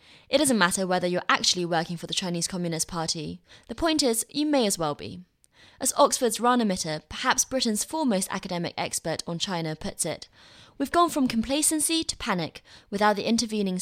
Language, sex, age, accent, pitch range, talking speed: English, female, 20-39, British, 170-245 Hz, 180 wpm